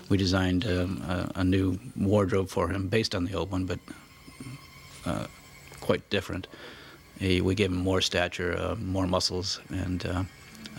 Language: English